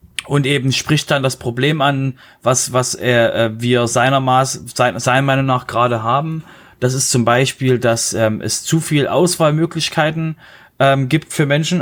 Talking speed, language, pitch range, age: 175 wpm, German, 120-135 Hz, 30-49